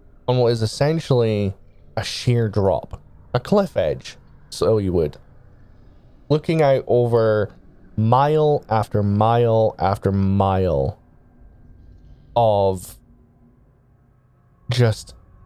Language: English